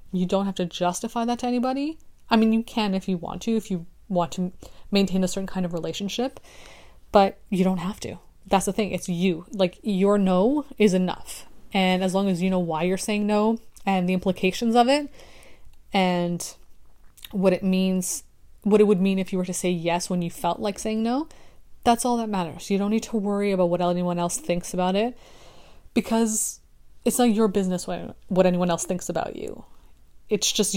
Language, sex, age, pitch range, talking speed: English, female, 20-39, 185-220 Hz, 205 wpm